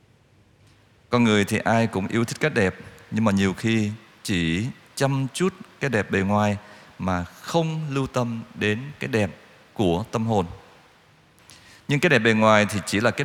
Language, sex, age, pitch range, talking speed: Vietnamese, male, 20-39, 100-130 Hz, 175 wpm